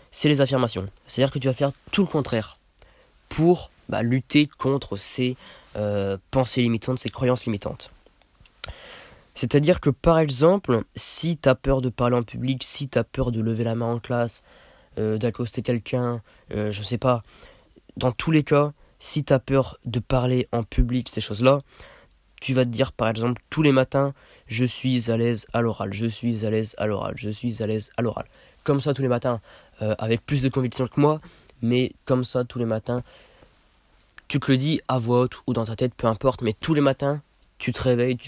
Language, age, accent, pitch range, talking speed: French, 20-39, French, 115-135 Hz, 210 wpm